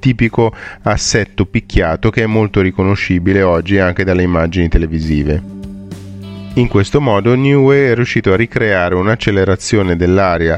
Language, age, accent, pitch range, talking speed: Italian, 30-49, native, 90-110 Hz, 125 wpm